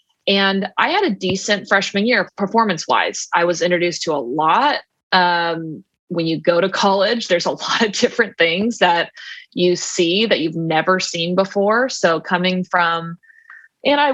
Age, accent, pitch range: 20-39, American, 170-205 Hz